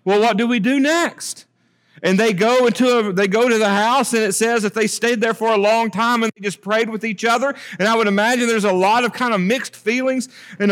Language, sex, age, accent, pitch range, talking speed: English, male, 40-59, American, 165-235 Hz, 265 wpm